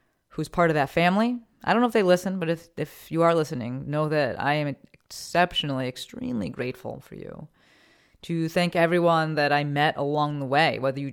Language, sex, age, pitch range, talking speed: English, female, 30-49, 135-180 Hz, 200 wpm